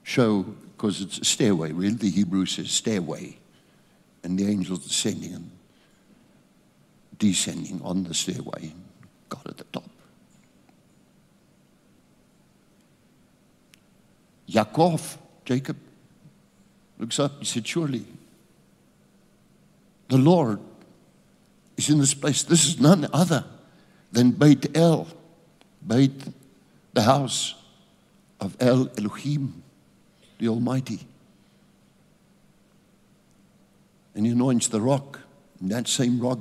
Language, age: English, 60-79